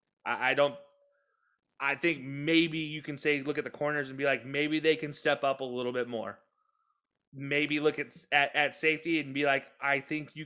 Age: 20-39